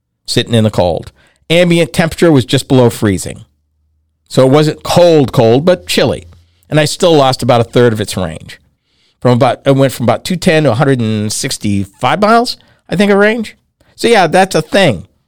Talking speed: 180 wpm